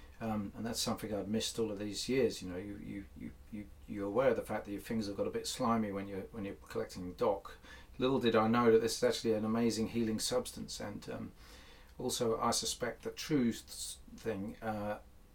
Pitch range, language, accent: 100-115 Hz, English, British